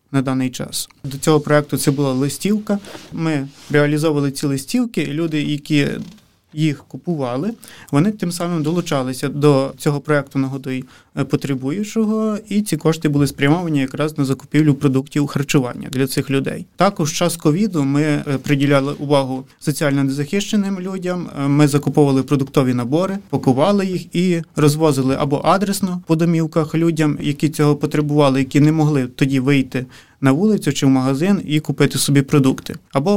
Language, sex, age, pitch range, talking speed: Ukrainian, male, 30-49, 140-160 Hz, 145 wpm